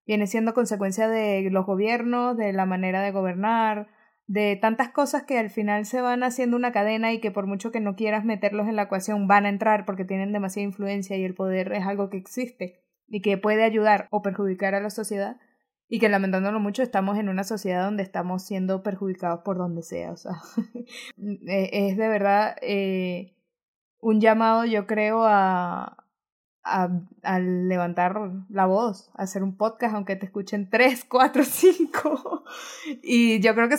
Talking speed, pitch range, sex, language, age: 180 wpm, 195-235 Hz, female, Spanish, 20-39